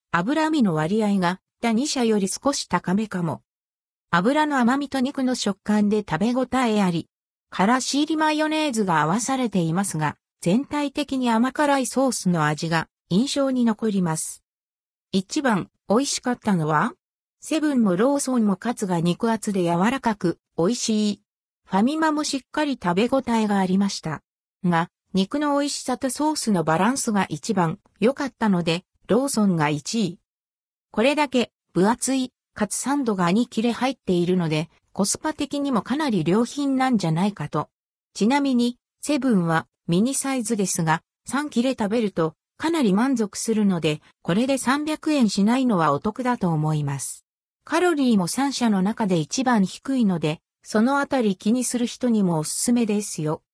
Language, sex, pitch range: Japanese, female, 175-260 Hz